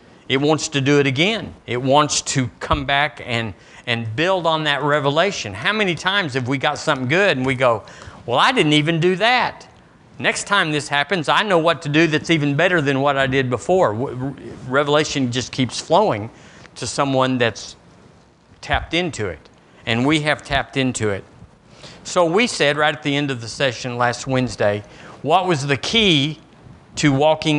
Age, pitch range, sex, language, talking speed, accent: 50-69, 130-175 Hz, male, English, 185 wpm, American